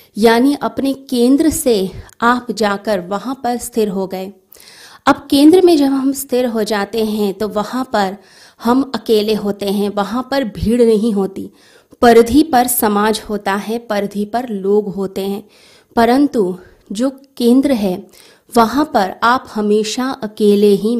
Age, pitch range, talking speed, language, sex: 20-39, 200-250 Hz, 150 wpm, Hindi, female